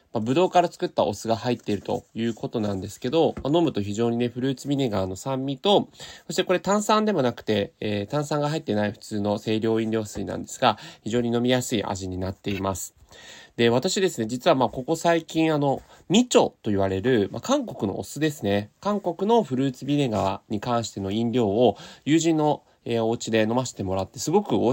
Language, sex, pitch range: Japanese, male, 105-170 Hz